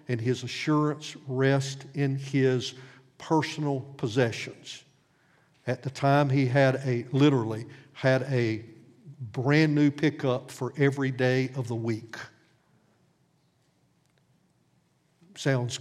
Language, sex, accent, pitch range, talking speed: English, male, American, 130-150 Hz, 100 wpm